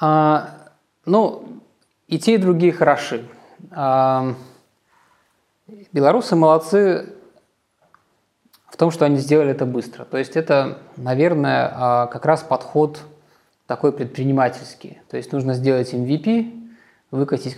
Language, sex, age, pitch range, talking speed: Russian, male, 20-39, 125-155 Hz, 100 wpm